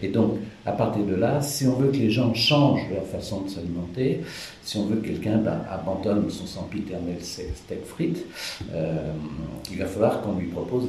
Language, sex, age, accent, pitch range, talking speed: French, male, 60-79, French, 90-115 Hz, 200 wpm